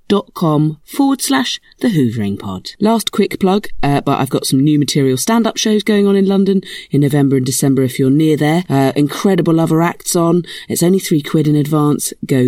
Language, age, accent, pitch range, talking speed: English, 40-59, British, 120-175 Hz, 205 wpm